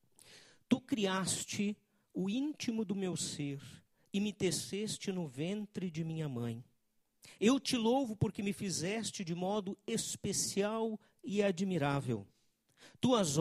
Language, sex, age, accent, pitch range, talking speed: Portuguese, male, 50-69, Brazilian, 155-210 Hz, 120 wpm